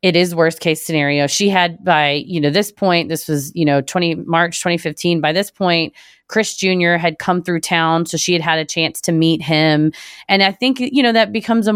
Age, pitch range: 30-49, 160-195 Hz